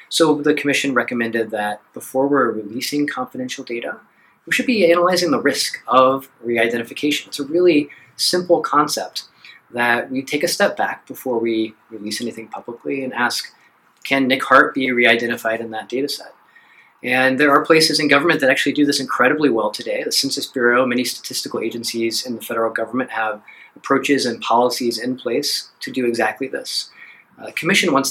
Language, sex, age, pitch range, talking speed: English, male, 30-49, 115-145 Hz, 170 wpm